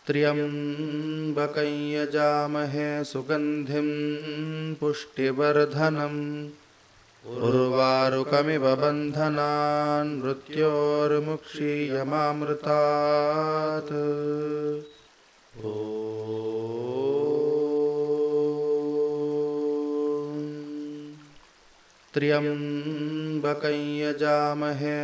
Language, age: Hindi, 20-39